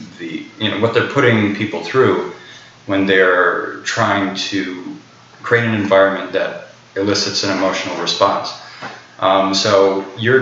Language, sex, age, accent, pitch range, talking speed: English, male, 20-39, American, 95-110 Hz, 130 wpm